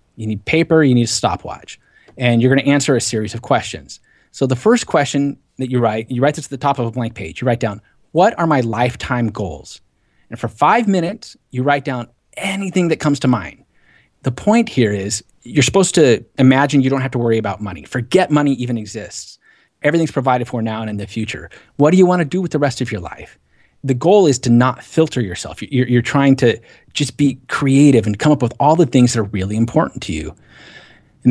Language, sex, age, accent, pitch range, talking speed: English, male, 30-49, American, 110-145 Hz, 230 wpm